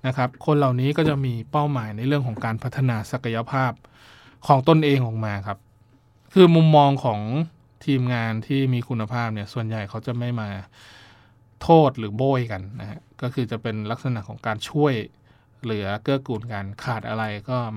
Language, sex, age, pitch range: Thai, male, 20-39, 110-135 Hz